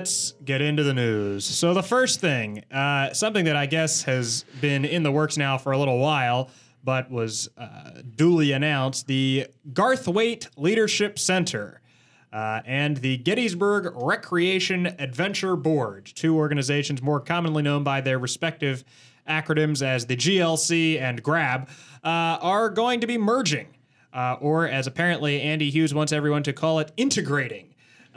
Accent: American